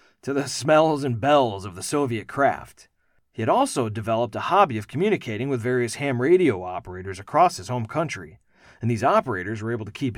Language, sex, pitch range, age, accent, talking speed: English, male, 105-150 Hz, 40-59, American, 195 wpm